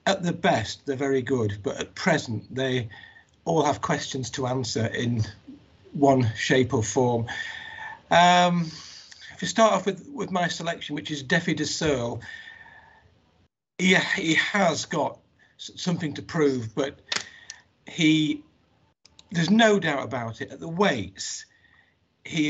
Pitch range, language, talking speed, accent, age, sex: 130-175 Hz, English, 145 wpm, British, 50-69, male